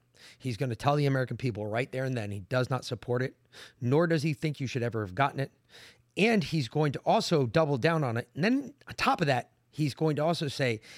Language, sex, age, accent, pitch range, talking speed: English, male, 30-49, American, 120-160 Hz, 250 wpm